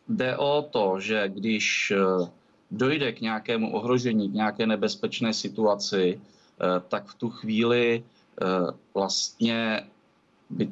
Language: Czech